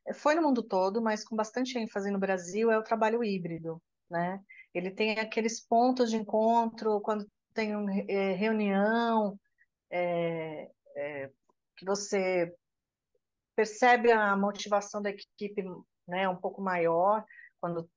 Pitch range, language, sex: 185-225 Hz, Portuguese, female